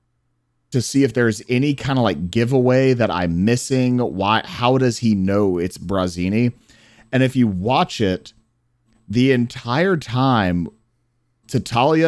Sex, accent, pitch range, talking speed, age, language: male, American, 100-120 Hz, 140 wpm, 30-49, English